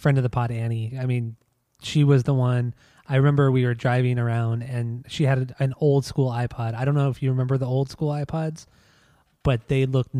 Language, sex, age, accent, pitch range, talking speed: English, male, 20-39, American, 120-140 Hz, 220 wpm